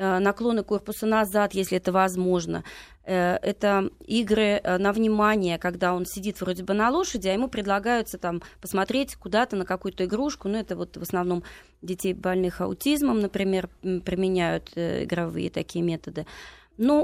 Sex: female